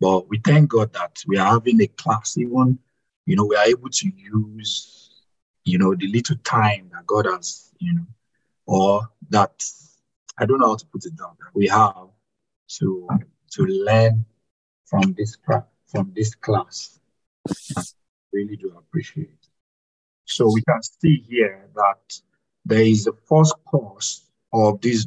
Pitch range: 105-155 Hz